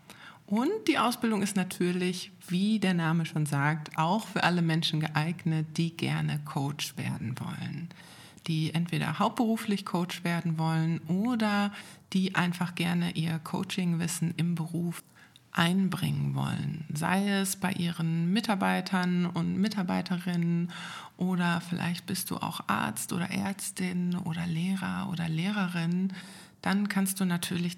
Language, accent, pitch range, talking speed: German, German, 160-190 Hz, 125 wpm